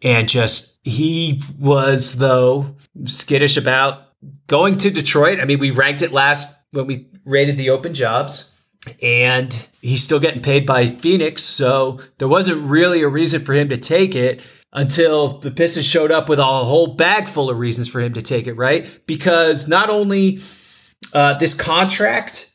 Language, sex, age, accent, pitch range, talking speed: English, male, 30-49, American, 125-155 Hz, 170 wpm